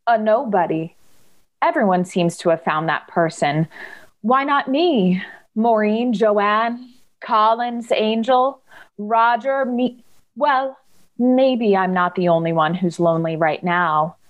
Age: 30-49